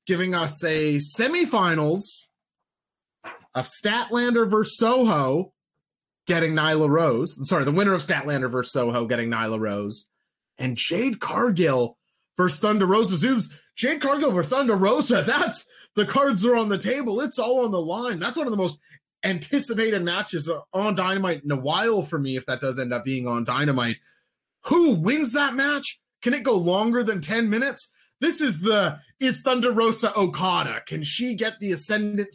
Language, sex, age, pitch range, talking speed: English, male, 30-49, 160-230 Hz, 170 wpm